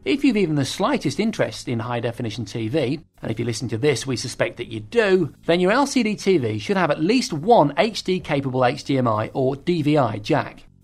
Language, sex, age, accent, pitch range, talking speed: English, male, 40-59, British, 120-165 Hz, 190 wpm